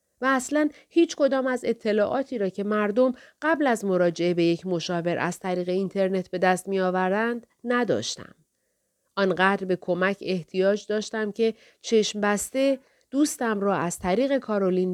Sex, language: female, Persian